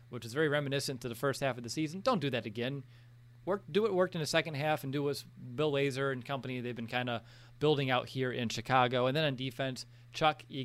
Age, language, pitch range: 30-49, English, 120-150 Hz